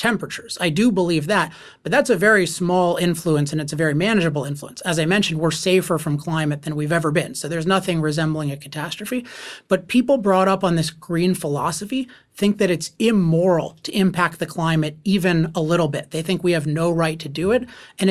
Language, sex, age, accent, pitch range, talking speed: English, male, 30-49, American, 160-195 Hz, 210 wpm